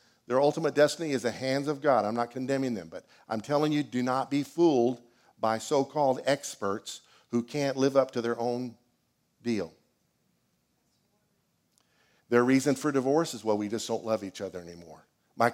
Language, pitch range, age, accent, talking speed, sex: English, 120-180 Hz, 50-69, American, 175 wpm, male